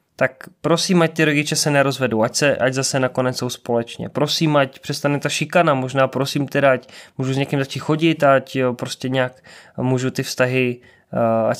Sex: male